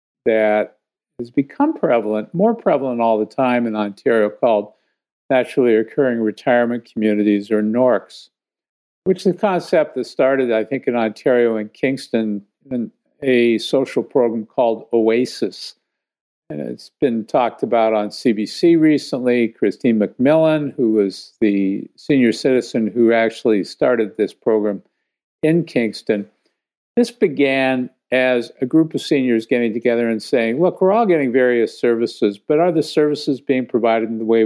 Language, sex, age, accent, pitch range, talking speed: English, male, 50-69, American, 110-140 Hz, 145 wpm